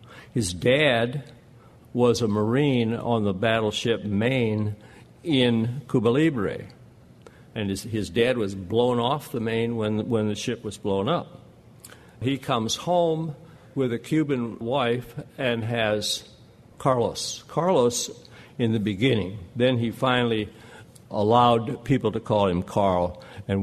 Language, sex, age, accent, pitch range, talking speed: English, male, 60-79, American, 105-130 Hz, 130 wpm